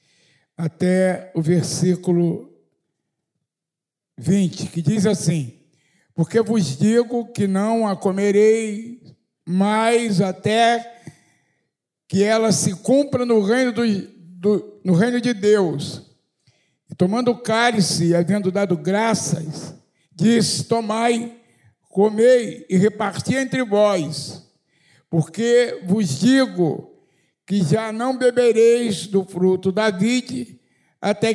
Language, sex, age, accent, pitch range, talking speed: Portuguese, male, 60-79, Brazilian, 175-230 Hz, 100 wpm